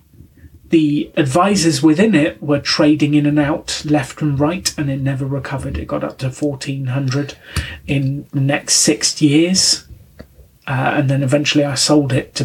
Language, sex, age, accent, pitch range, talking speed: English, male, 30-49, British, 130-150 Hz, 165 wpm